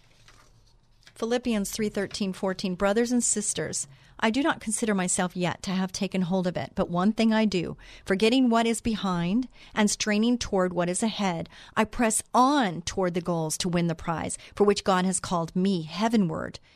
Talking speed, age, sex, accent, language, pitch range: 185 wpm, 40-59, female, American, English, 180-250 Hz